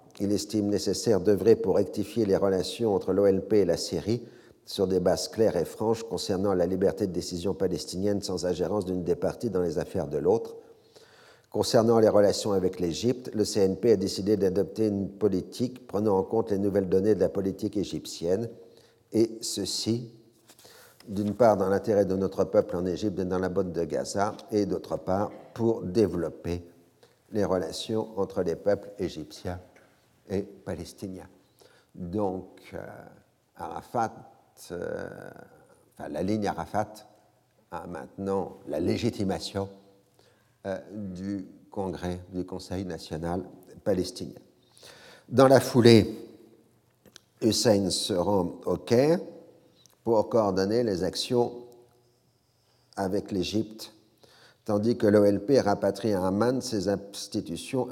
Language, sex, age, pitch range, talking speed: French, male, 50-69, 95-115 Hz, 130 wpm